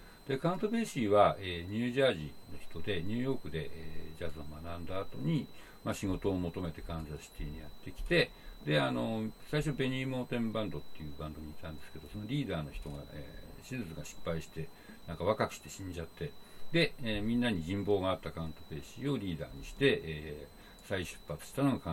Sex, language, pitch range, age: male, Japanese, 80-115 Hz, 60-79